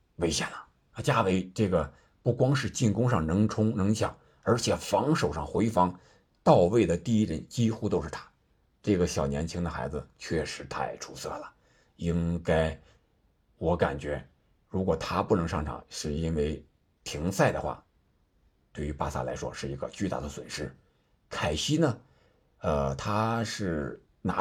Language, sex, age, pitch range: Chinese, male, 50-69, 80-115 Hz